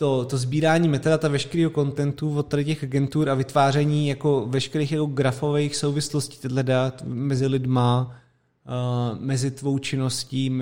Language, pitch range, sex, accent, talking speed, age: Czech, 130-160 Hz, male, native, 105 wpm, 20-39